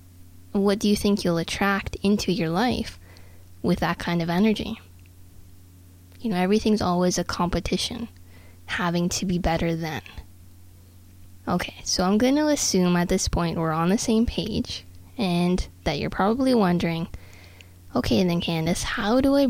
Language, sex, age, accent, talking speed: English, female, 20-39, American, 155 wpm